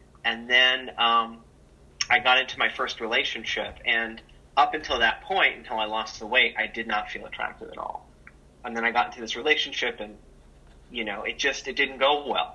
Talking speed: 200 wpm